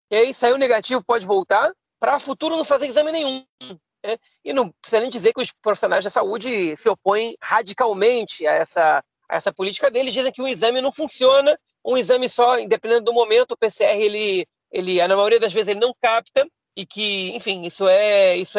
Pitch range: 195-270 Hz